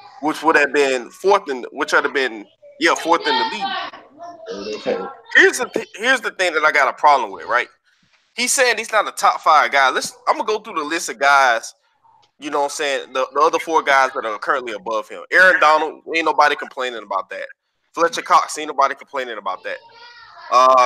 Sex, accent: male, American